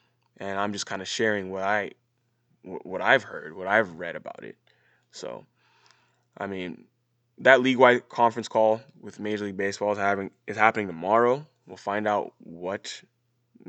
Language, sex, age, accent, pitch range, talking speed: English, male, 20-39, American, 100-120 Hz, 160 wpm